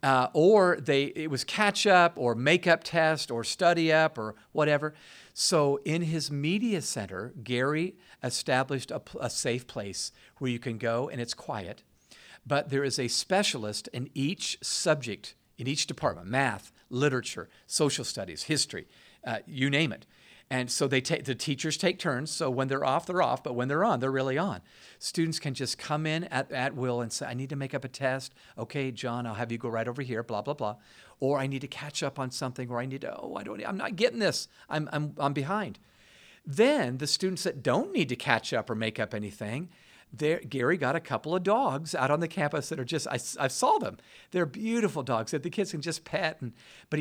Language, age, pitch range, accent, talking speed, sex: English, 50-69, 125-160 Hz, American, 210 wpm, male